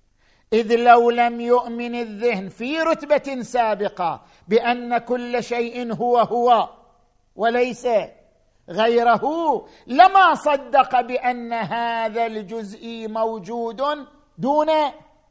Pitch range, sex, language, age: 215-255 Hz, male, Arabic, 50-69